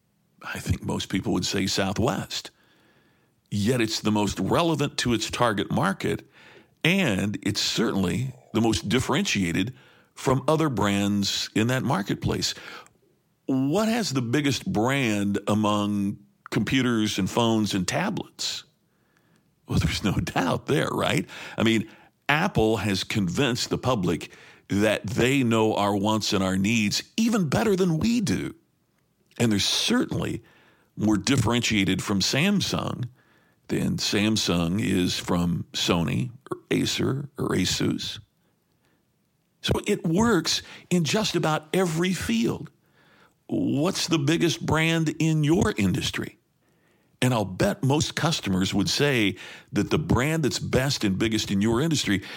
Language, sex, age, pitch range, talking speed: English, male, 50-69, 105-160 Hz, 130 wpm